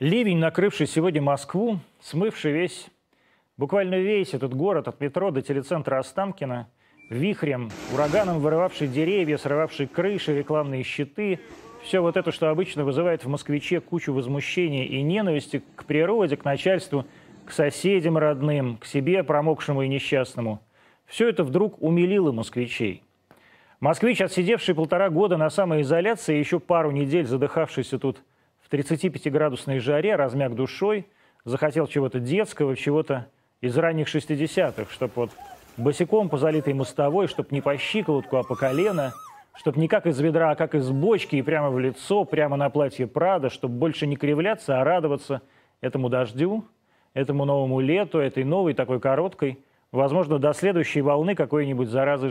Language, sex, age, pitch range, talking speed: Russian, male, 30-49, 135-175 Hz, 140 wpm